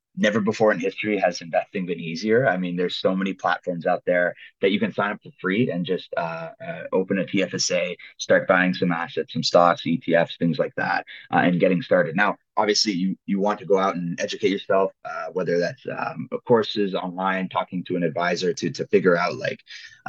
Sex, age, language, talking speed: male, 20-39, English, 210 wpm